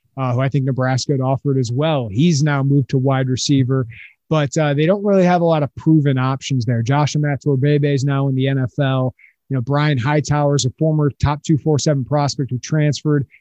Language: English